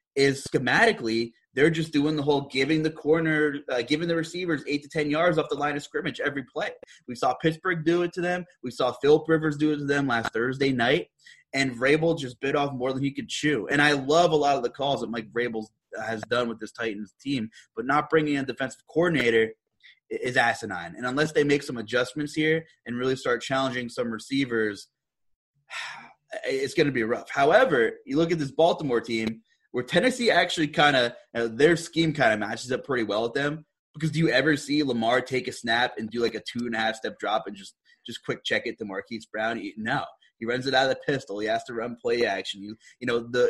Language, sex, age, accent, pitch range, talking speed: English, male, 20-39, American, 115-150 Hz, 225 wpm